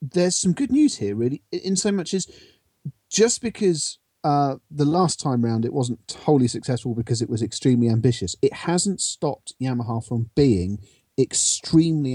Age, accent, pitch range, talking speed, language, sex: 40-59, British, 115-145 Hz, 165 wpm, English, male